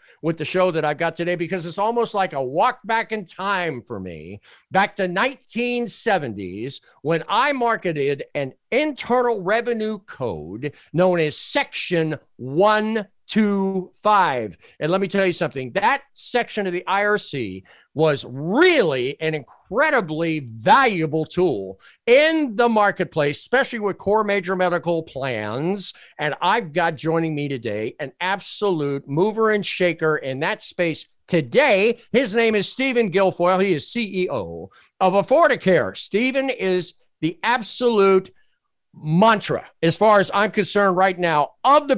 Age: 50-69